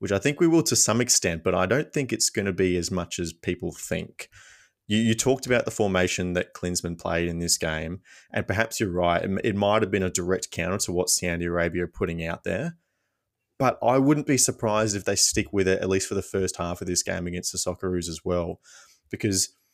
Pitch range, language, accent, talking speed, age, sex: 85-105 Hz, English, Australian, 235 wpm, 20-39, male